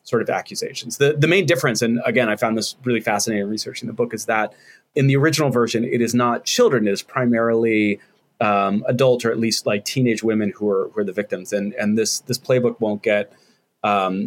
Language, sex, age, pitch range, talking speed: English, male, 30-49, 105-125 Hz, 225 wpm